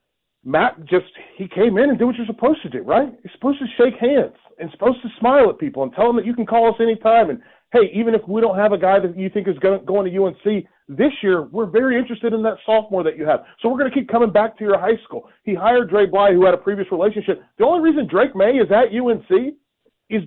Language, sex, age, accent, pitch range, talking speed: English, male, 40-59, American, 180-230 Hz, 270 wpm